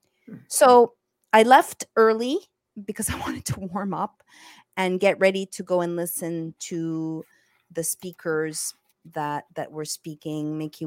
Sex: female